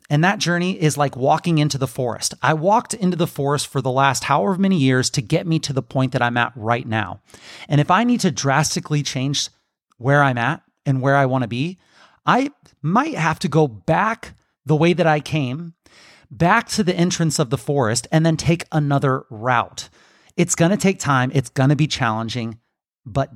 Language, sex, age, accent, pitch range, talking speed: English, male, 30-49, American, 125-160 Hz, 200 wpm